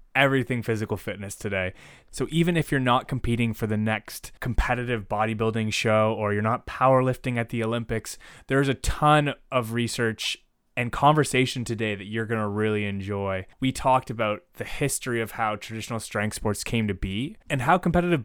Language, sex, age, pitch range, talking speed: English, male, 20-39, 105-130 Hz, 175 wpm